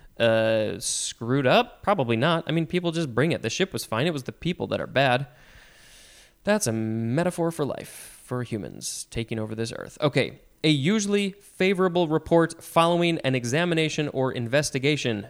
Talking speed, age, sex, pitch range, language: 170 wpm, 20-39, male, 120-165 Hz, English